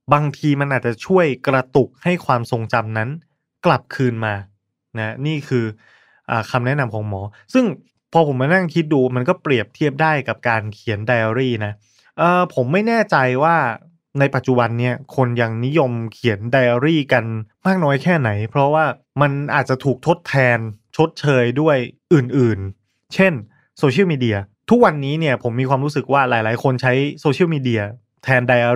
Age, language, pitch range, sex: 20-39, Thai, 115-150 Hz, male